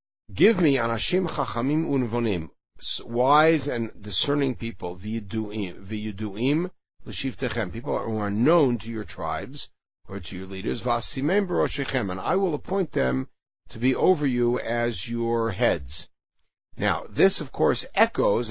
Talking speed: 140 wpm